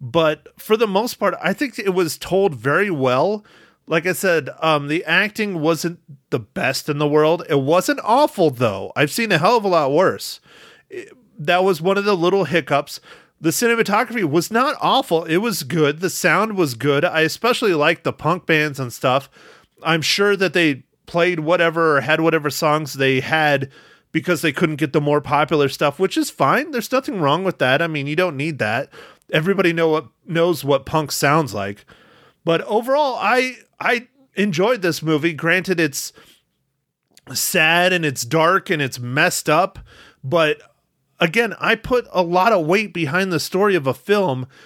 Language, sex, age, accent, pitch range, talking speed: English, male, 30-49, American, 150-205 Hz, 185 wpm